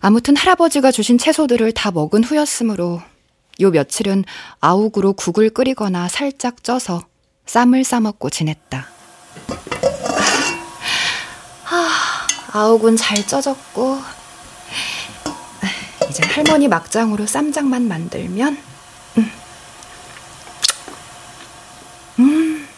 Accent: native